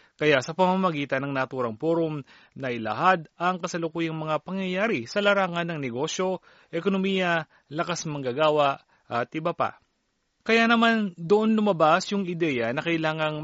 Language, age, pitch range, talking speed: Filipino, 30-49, 150-195 Hz, 130 wpm